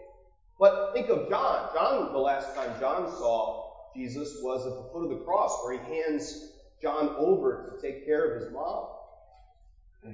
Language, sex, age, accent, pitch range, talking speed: English, male, 30-49, American, 115-185 Hz, 180 wpm